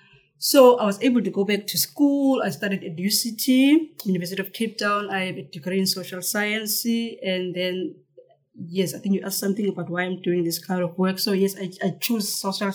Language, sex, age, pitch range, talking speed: English, female, 20-39, 165-195 Hz, 215 wpm